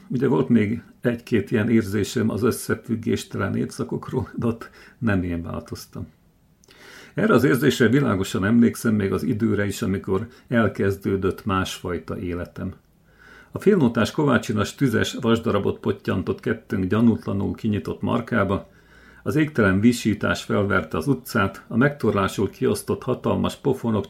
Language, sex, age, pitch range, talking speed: Hungarian, male, 50-69, 100-120 Hz, 115 wpm